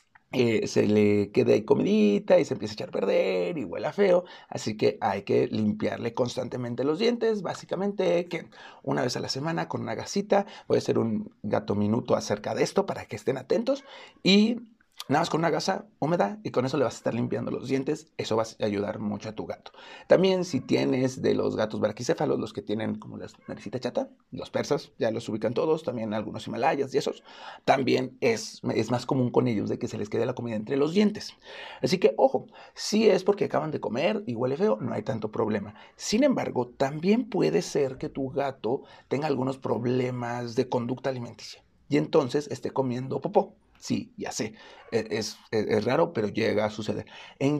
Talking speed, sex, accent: 200 wpm, male, Mexican